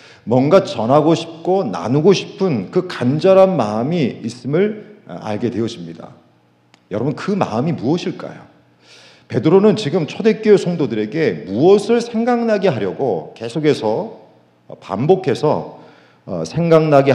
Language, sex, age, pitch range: Korean, male, 40-59, 110-180 Hz